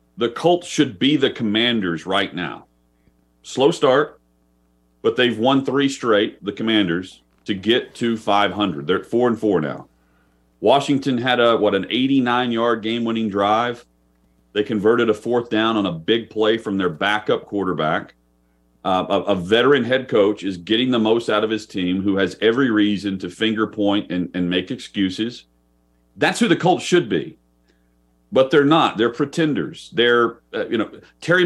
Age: 40-59